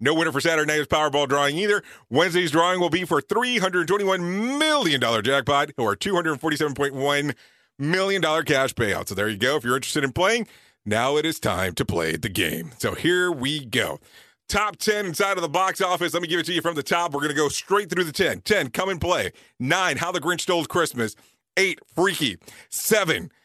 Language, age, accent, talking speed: English, 40-59, American, 205 wpm